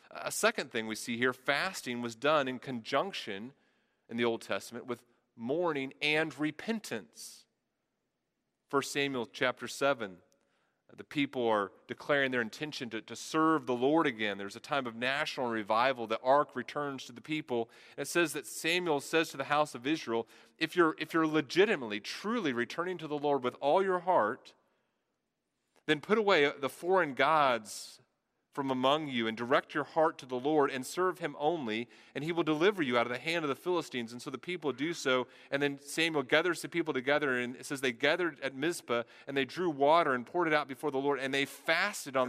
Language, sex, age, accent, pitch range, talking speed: English, male, 40-59, American, 125-160 Hz, 195 wpm